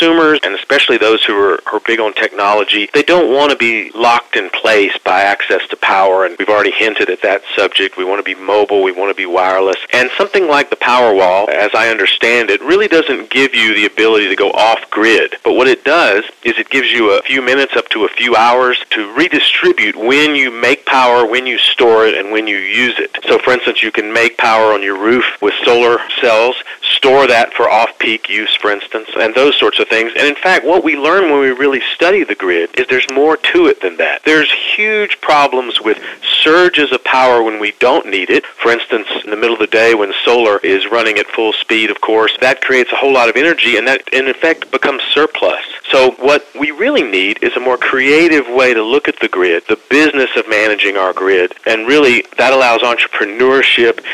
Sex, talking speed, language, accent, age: male, 220 wpm, English, American, 40-59